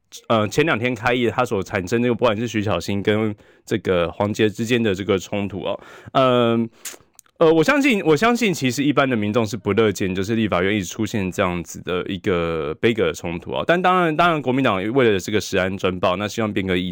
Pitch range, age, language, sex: 95-145 Hz, 20-39, Chinese, male